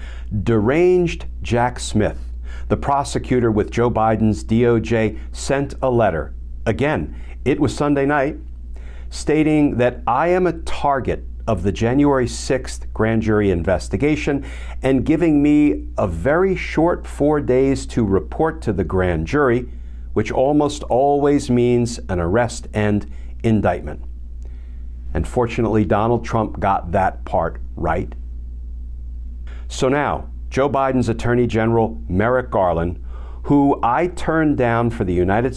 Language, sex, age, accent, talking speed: English, male, 50-69, American, 125 wpm